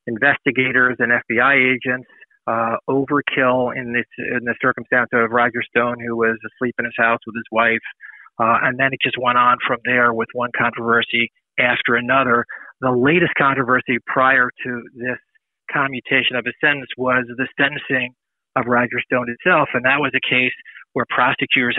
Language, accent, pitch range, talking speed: English, American, 115-130 Hz, 170 wpm